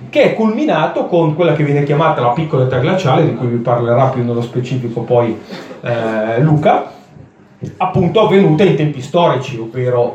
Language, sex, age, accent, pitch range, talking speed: Italian, male, 30-49, native, 125-170 Hz, 165 wpm